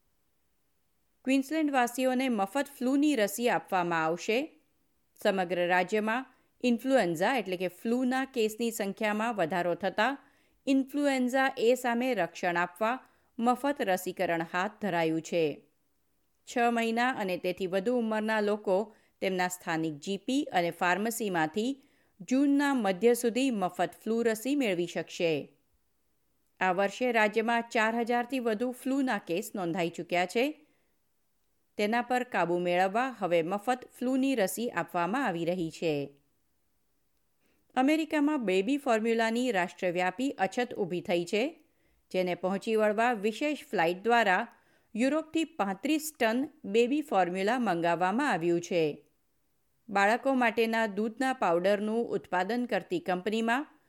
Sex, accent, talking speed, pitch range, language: female, native, 110 wpm, 180-255 Hz, Gujarati